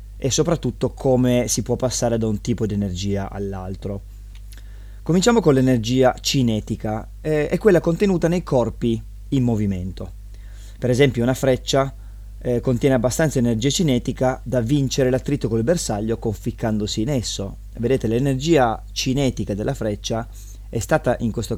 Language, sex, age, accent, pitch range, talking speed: Italian, male, 20-39, native, 105-130 Hz, 140 wpm